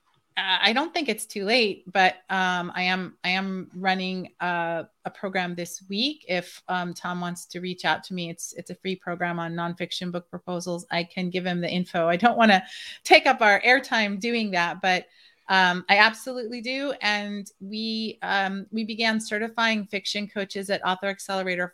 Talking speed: 190 wpm